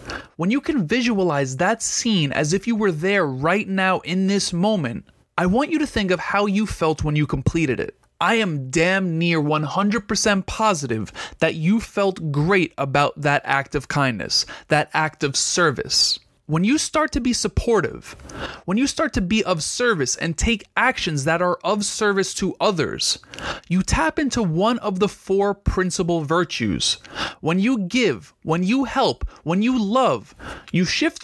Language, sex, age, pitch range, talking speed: English, male, 20-39, 165-230 Hz, 175 wpm